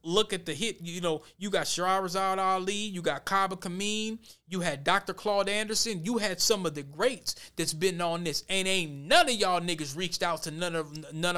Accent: American